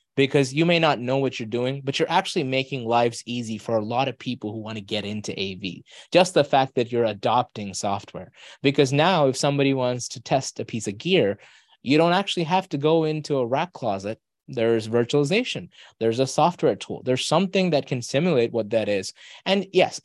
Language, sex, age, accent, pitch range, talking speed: English, male, 20-39, American, 115-160 Hz, 205 wpm